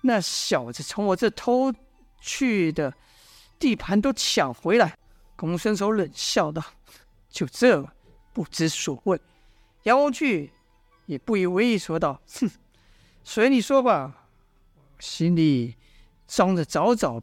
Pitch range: 150-235 Hz